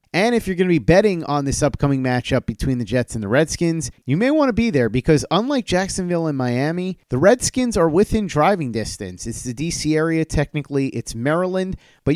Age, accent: 30-49, American